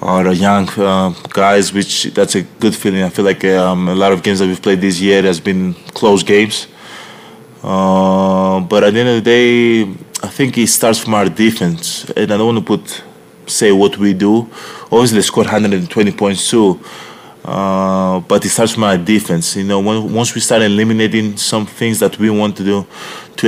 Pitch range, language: 95-110 Hz, English